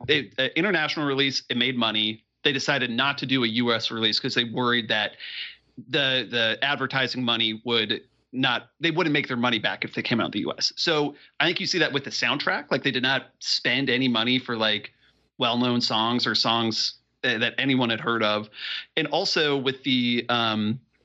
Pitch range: 115-145 Hz